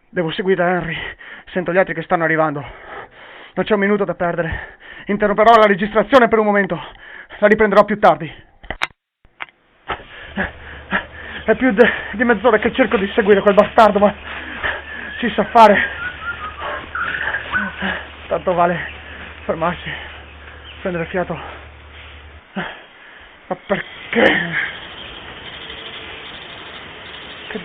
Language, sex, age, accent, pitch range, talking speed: Italian, male, 30-49, native, 175-220 Hz, 100 wpm